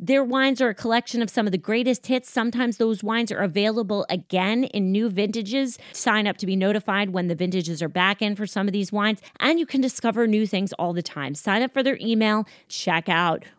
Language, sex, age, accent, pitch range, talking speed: English, female, 30-49, American, 190-235 Hz, 230 wpm